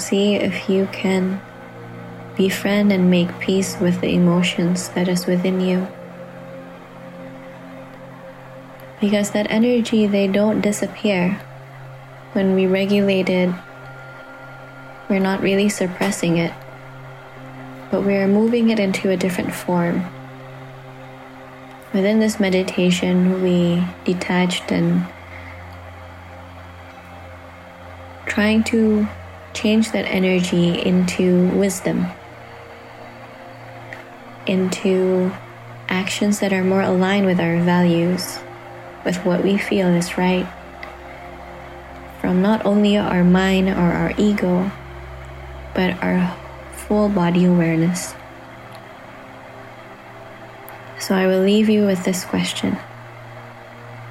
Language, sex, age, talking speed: English, female, 20-39, 100 wpm